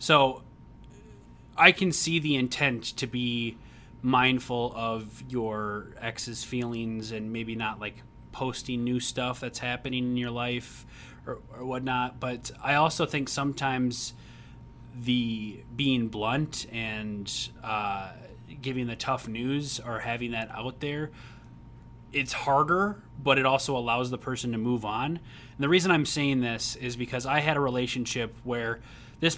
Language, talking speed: English, 145 wpm